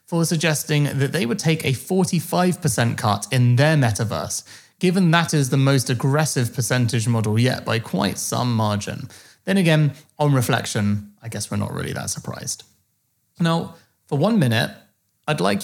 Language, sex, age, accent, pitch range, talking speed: English, male, 30-49, British, 110-145 Hz, 160 wpm